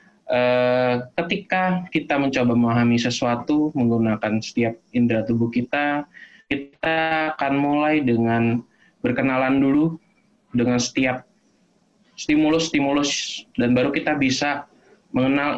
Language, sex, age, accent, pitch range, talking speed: Indonesian, male, 20-39, native, 120-155 Hz, 90 wpm